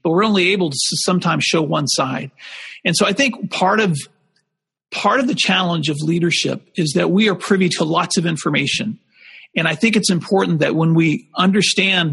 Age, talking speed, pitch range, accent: 40-59, 195 wpm, 160-190 Hz, American